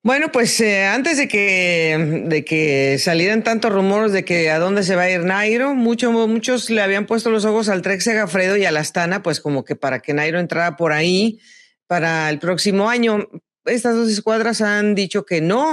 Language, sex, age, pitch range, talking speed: Spanish, female, 40-59, 155-220 Hz, 205 wpm